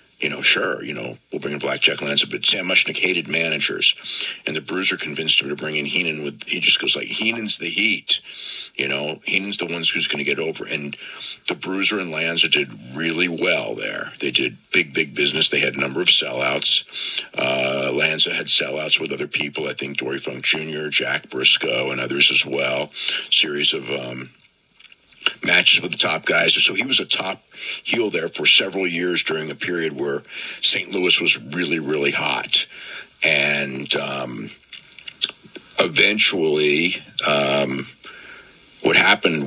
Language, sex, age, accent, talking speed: English, male, 50-69, American, 175 wpm